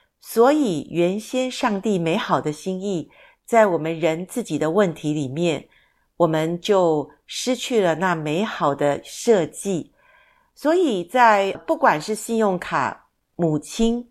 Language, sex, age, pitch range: Chinese, female, 50-69, 165-230 Hz